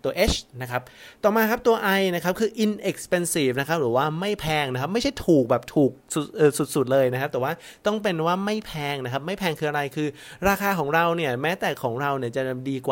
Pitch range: 130-175 Hz